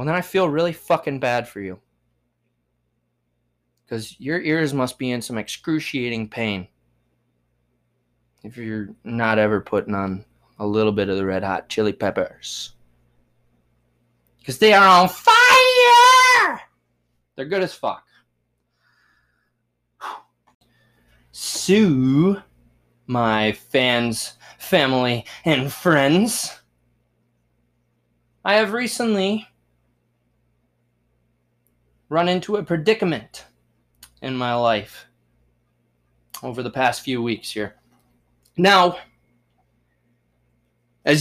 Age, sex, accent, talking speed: 20-39, male, American, 95 wpm